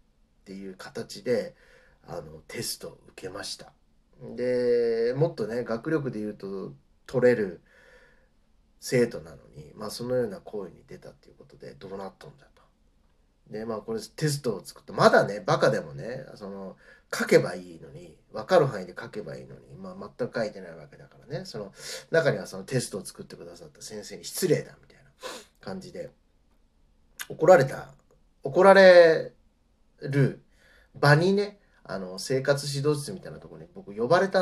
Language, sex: Japanese, male